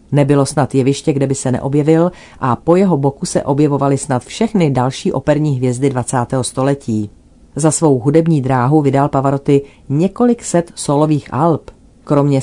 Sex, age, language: female, 40-59, Czech